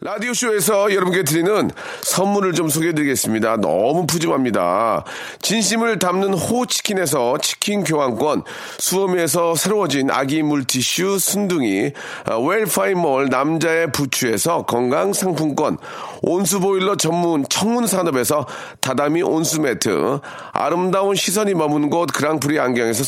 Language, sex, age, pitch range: Korean, male, 40-59, 155-200 Hz